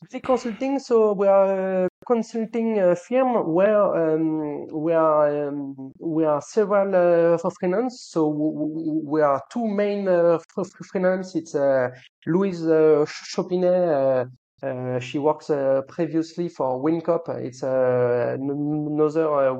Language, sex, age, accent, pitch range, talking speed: English, male, 30-49, French, 145-195 Hz, 130 wpm